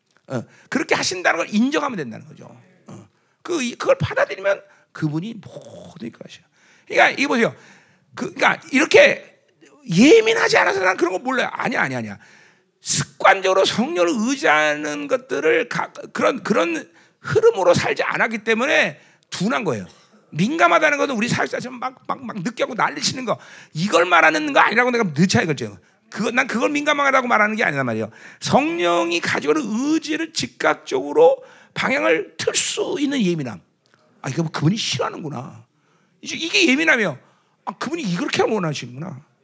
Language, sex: Korean, male